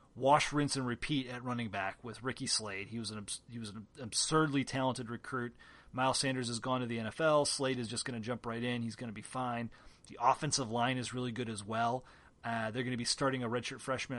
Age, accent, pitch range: 30-49, American, 120-150 Hz